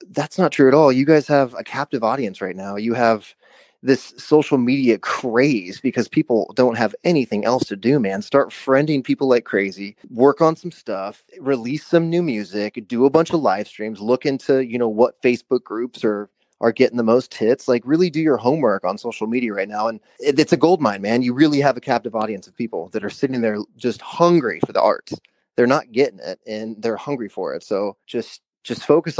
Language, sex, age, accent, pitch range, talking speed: English, male, 20-39, American, 110-135 Hz, 215 wpm